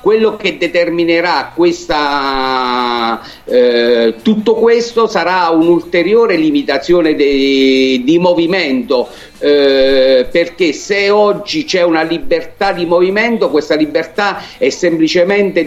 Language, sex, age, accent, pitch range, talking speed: Italian, male, 50-69, native, 145-205 Hz, 100 wpm